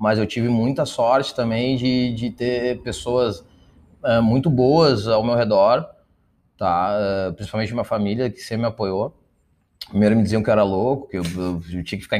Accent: Brazilian